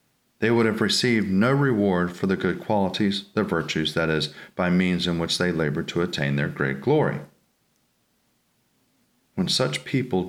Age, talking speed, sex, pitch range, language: 40-59, 165 wpm, male, 85-125 Hz, English